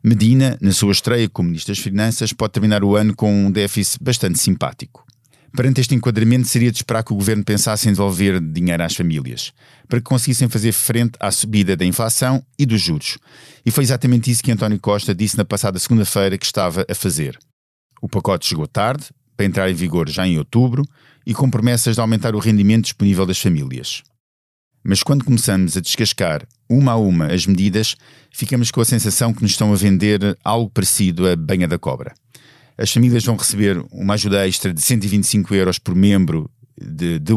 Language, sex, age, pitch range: Portuguese, male, 50-69, 100-125 Hz